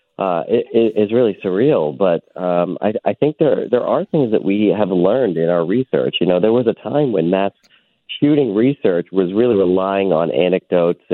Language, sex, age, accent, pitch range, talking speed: English, male, 40-59, American, 85-105 Hz, 200 wpm